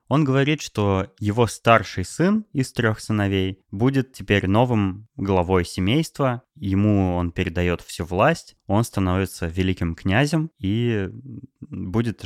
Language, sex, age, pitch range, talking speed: Russian, male, 20-39, 90-110 Hz, 120 wpm